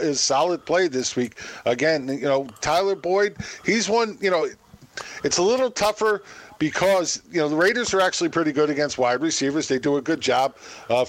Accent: American